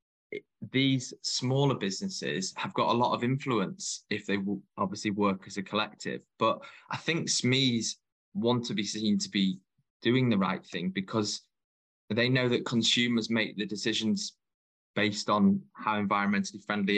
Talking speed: 155 wpm